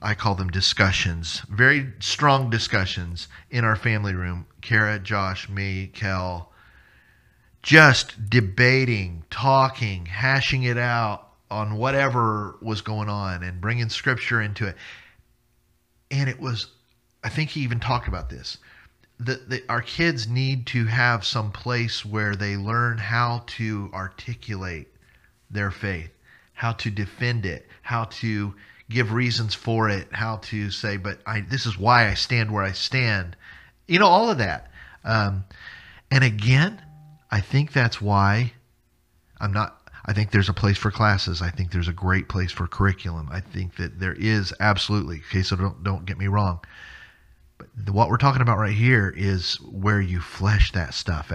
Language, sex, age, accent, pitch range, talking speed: English, male, 40-59, American, 95-120 Hz, 160 wpm